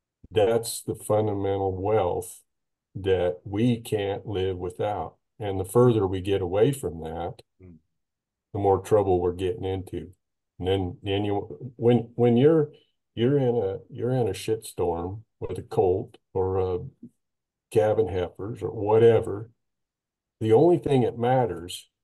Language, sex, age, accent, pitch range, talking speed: English, male, 50-69, American, 95-120 Hz, 140 wpm